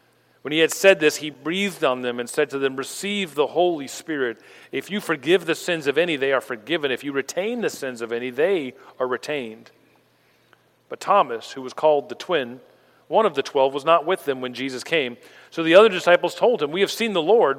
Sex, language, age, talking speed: male, English, 40-59, 225 wpm